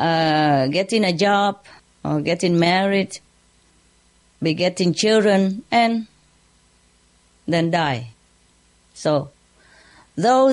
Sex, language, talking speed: female, English, 80 wpm